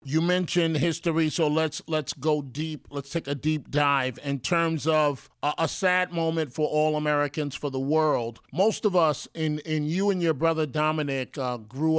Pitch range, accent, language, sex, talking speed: 140-165 Hz, American, English, male, 190 wpm